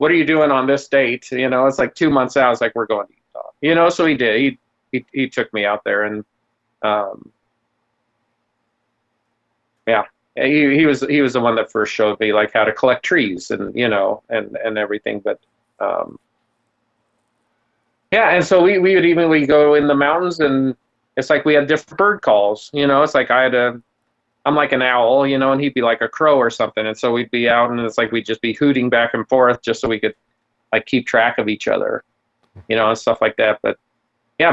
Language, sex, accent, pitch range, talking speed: English, male, American, 115-150 Hz, 235 wpm